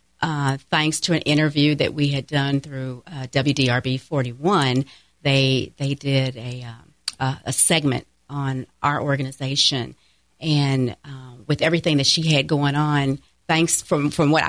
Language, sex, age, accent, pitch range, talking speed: English, female, 40-59, American, 130-155 Hz, 155 wpm